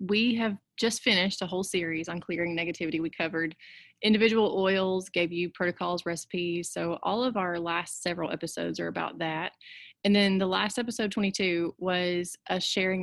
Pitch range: 170-195 Hz